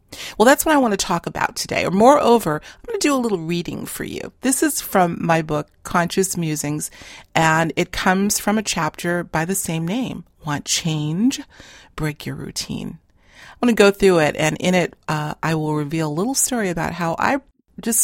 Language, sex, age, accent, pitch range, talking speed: English, female, 40-59, American, 160-215 Hz, 205 wpm